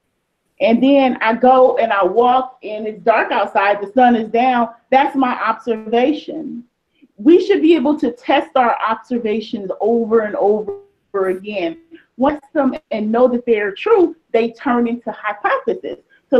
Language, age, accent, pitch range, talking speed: English, 30-49, American, 220-295 Hz, 155 wpm